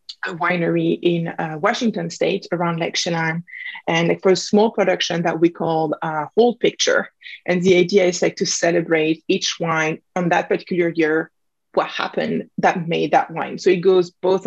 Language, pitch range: English, 170-205 Hz